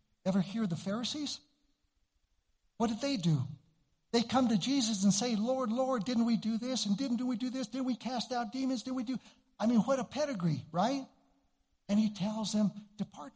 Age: 60-79